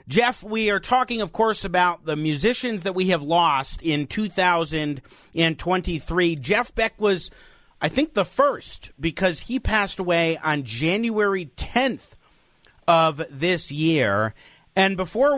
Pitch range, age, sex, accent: 155-210 Hz, 40-59, male, American